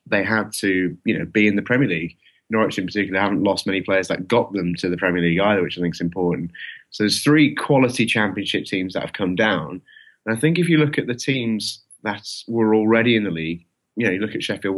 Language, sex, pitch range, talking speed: English, male, 95-110 Hz, 250 wpm